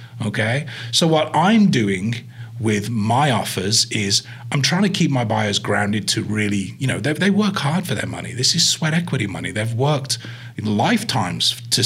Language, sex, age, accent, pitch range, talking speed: English, male, 30-49, British, 110-130 Hz, 185 wpm